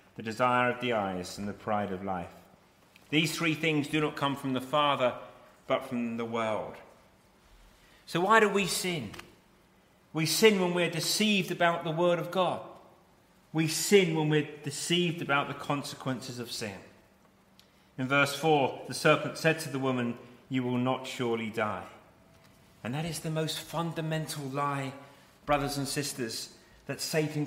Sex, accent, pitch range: male, British, 125-170 Hz